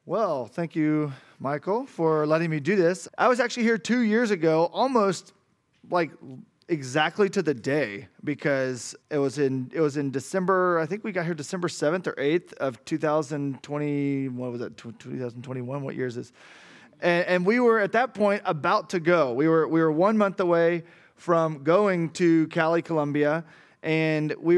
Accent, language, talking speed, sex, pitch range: American, English, 180 wpm, male, 155-190 Hz